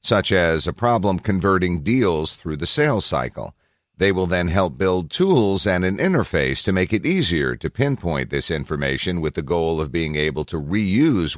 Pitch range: 75-100 Hz